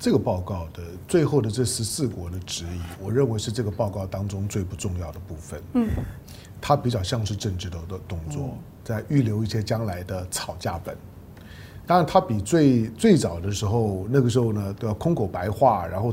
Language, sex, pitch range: Chinese, male, 100-150 Hz